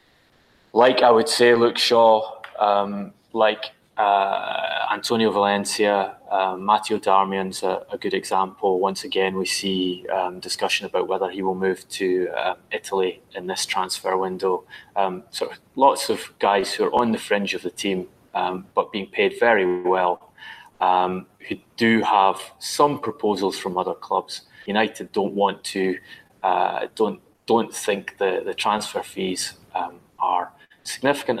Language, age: English, 20-39